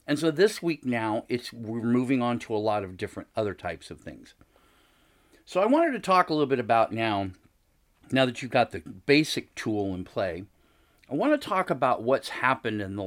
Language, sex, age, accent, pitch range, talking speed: English, male, 40-59, American, 110-145 Hz, 205 wpm